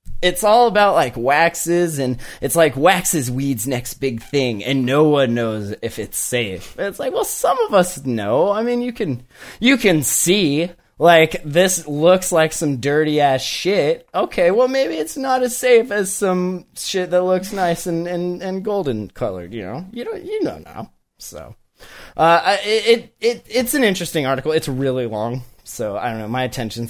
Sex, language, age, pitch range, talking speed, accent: male, English, 20-39, 135-195 Hz, 185 wpm, American